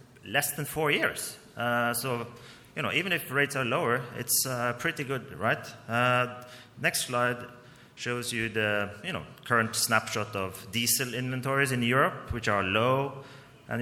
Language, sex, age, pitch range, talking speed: English, male, 30-49, 115-135 Hz, 160 wpm